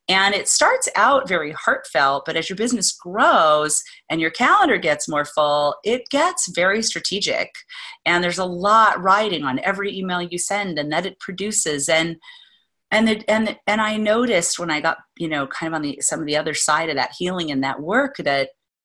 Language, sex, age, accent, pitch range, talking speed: English, female, 30-49, American, 150-220 Hz, 200 wpm